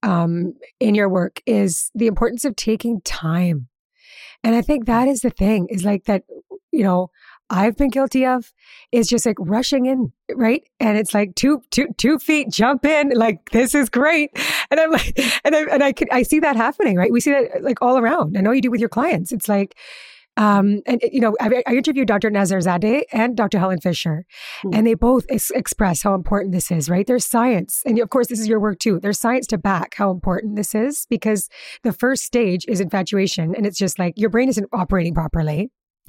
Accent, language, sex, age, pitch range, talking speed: American, English, female, 30-49, 195-250 Hz, 215 wpm